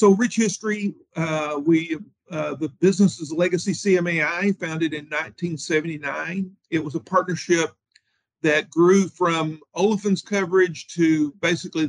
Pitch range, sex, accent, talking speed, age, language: 150-180 Hz, male, American, 120 wpm, 50-69, English